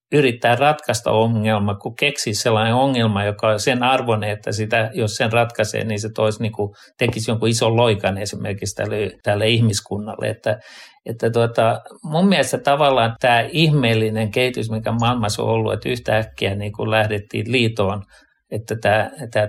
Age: 50-69